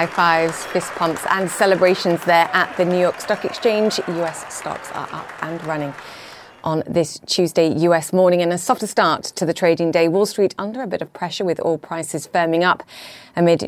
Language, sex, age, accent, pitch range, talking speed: English, female, 30-49, British, 155-185 Hz, 200 wpm